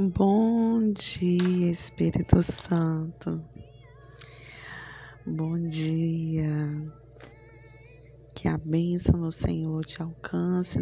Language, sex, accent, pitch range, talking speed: Portuguese, female, Brazilian, 115-170 Hz, 70 wpm